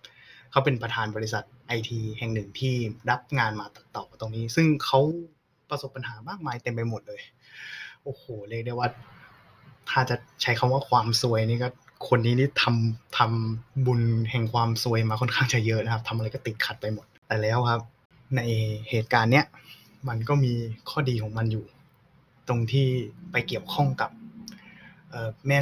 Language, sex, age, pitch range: Thai, male, 20-39, 110-130 Hz